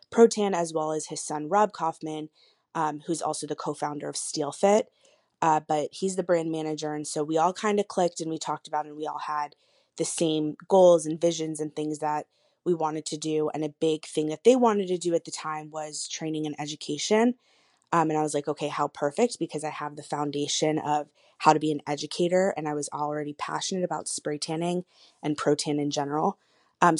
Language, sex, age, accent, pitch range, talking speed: English, female, 20-39, American, 150-170 Hz, 215 wpm